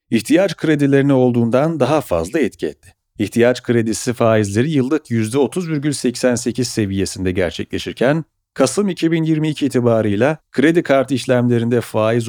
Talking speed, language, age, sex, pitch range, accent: 105 wpm, Turkish, 40-59, male, 110-140 Hz, native